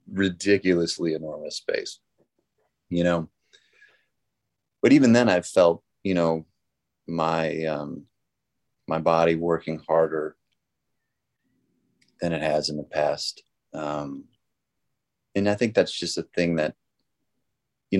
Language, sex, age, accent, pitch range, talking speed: English, male, 30-49, American, 80-100 Hz, 115 wpm